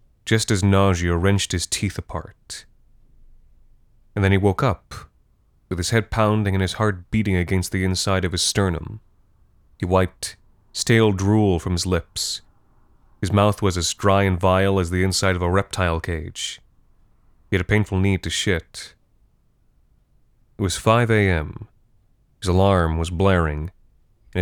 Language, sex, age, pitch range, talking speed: English, male, 30-49, 90-110 Hz, 155 wpm